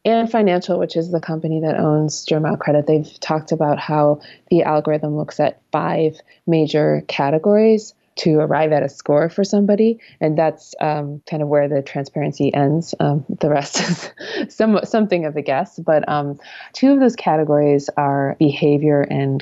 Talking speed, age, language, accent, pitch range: 165 wpm, 20-39, English, American, 145-170 Hz